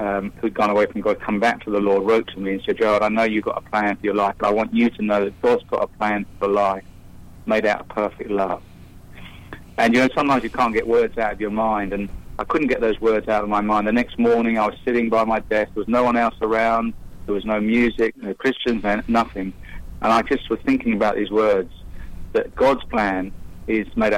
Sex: male